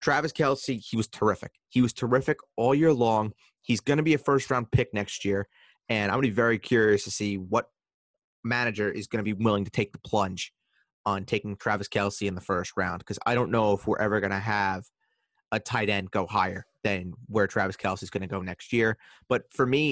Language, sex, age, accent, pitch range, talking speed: English, male, 30-49, American, 100-125 Hz, 225 wpm